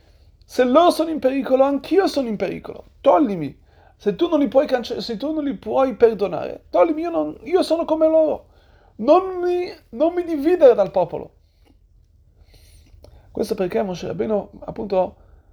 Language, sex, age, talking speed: Italian, male, 30-49, 160 wpm